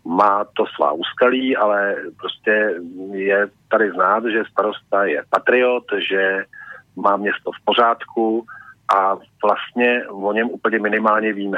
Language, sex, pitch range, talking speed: Slovak, male, 100-115 Hz, 130 wpm